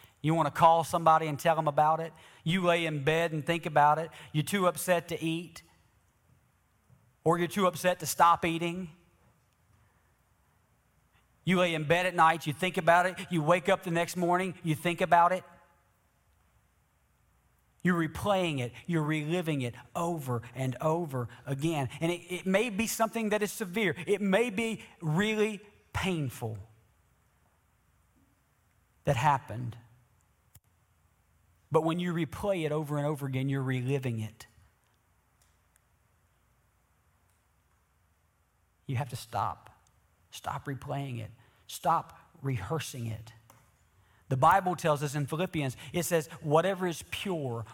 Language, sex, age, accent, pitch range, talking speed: English, male, 40-59, American, 115-175 Hz, 135 wpm